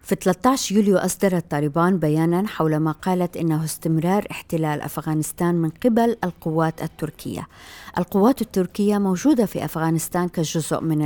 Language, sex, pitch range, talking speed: Arabic, female, 155-185 Hz, 130 wpm